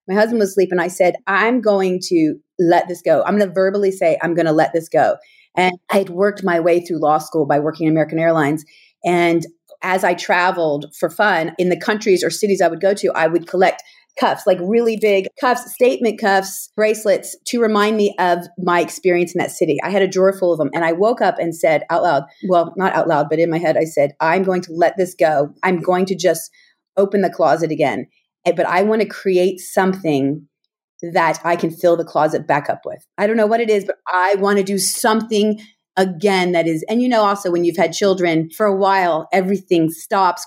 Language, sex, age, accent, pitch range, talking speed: English, female, 30-49, American, 170-215 Hz, 230 wpm